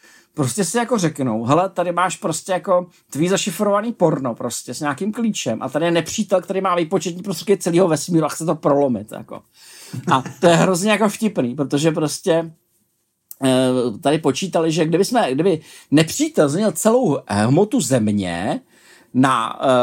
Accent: native